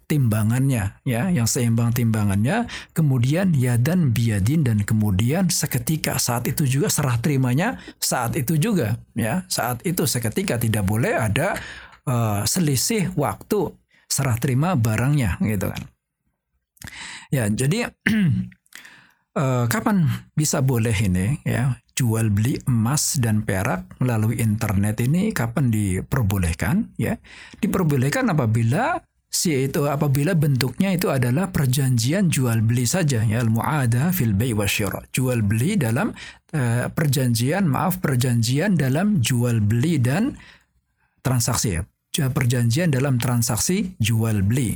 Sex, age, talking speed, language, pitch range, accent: male, 60-79, 120 wpm, Indonesian, 110-150 Hz, native